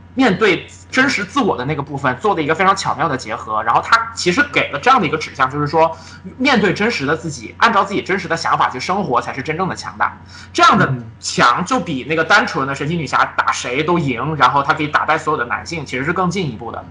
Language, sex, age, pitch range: Chinese, male, 20-39, 125-170 Hz